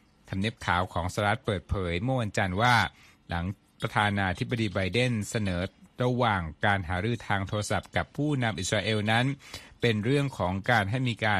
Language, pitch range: Thai, 95-125 Hz